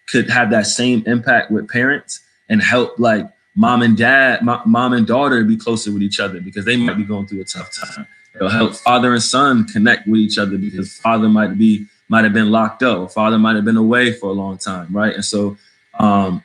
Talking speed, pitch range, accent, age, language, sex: 220 wpm, 105-120 Hz, American, 20-39, English, male